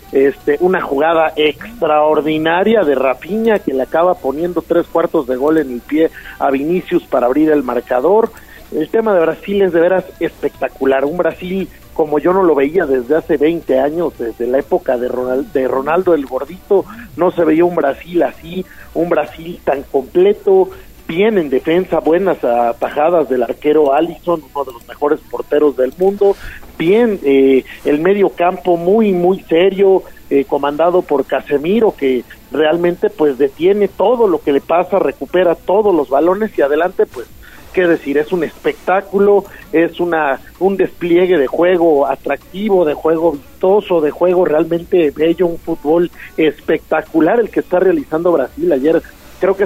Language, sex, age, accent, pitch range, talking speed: Spanish, male, 40-59, Mexican, 145-185 Hz, 160 wpm